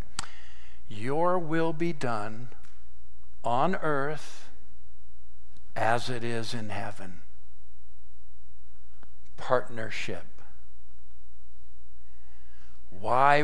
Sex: male